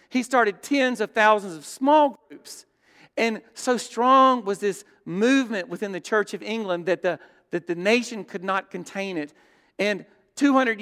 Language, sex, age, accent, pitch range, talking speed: English, male, 50-69, American, 170-220 Hz, 160 wpm